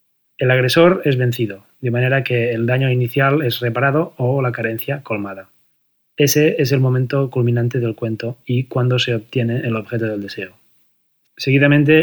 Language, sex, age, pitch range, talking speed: Spanish, male, 20-39, 120-135 Hz, 160 wpm